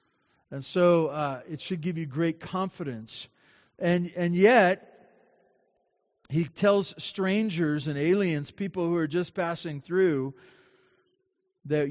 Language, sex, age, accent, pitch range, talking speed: English, male, 40-59, American, 140-190 Hz, 120 wpm